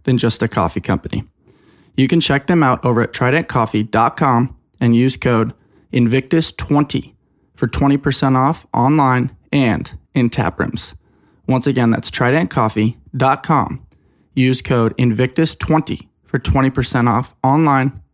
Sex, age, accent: male, 20-39, American